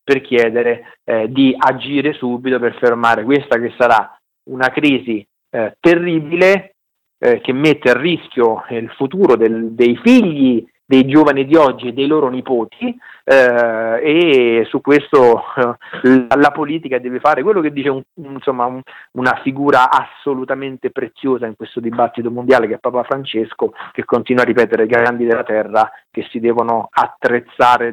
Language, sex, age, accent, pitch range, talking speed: Italian, male, 40-59, native, 120-145 Hz, 155 wpm